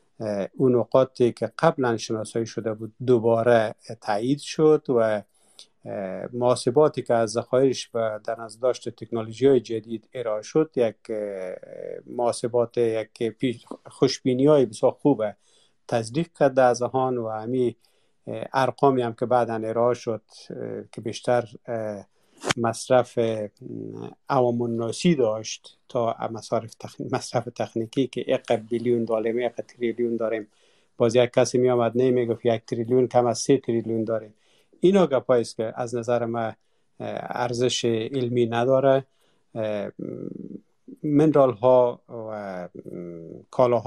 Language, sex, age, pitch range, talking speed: Persian, male, 50-69, 115-130 Hz, 115 wpm